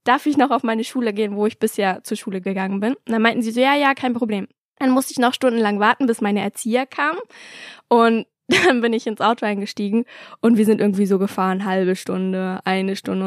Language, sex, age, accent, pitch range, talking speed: German, female, 10-29, German, 200-245 Hz, 225 wpm